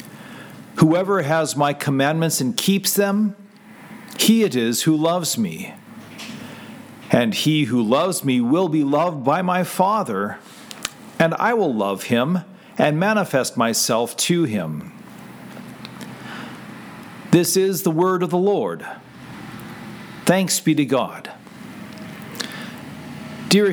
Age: 50-69